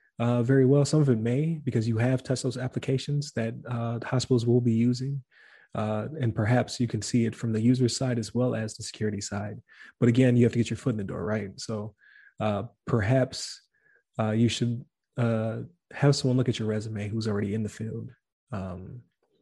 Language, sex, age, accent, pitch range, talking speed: English, male, 20-39, American, 110-125 Hz, 205 wpm